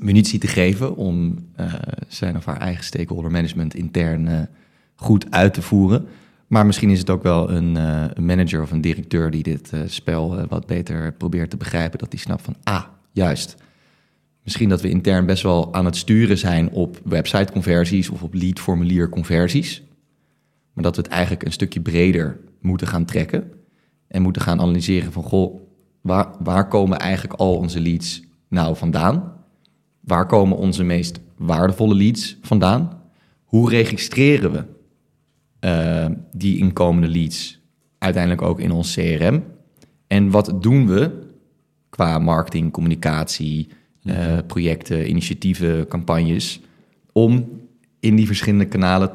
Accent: Dutch